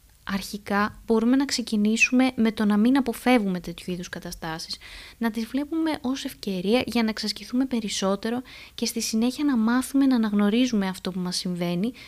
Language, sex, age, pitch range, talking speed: Greek, female, 20-39, 200-245 Hz, 160 wpm